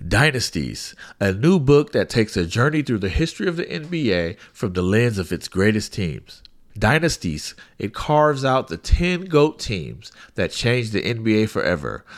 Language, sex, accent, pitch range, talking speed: English, male, American, 95-130 Hz, 170 wpm